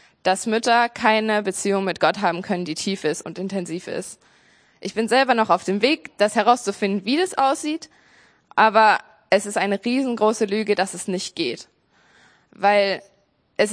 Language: German